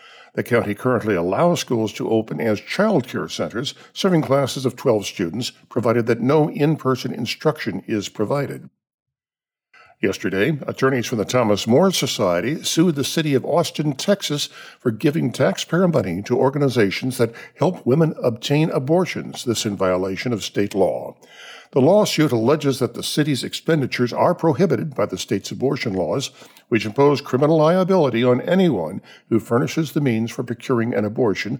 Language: English